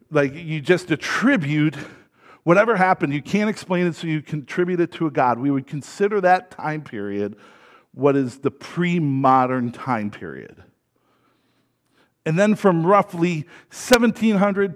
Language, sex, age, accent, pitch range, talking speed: English, male, 50-69, American, 140-190 Hz, 140 wpm